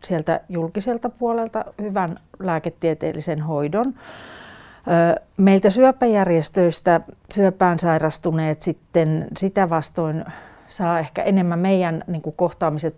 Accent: native